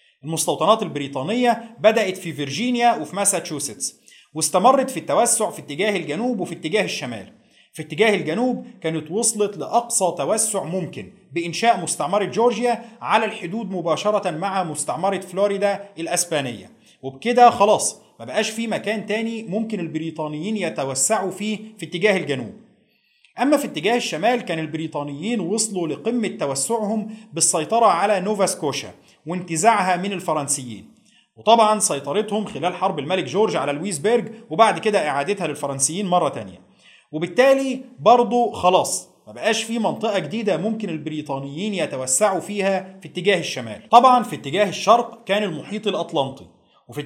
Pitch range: 160-225 Hz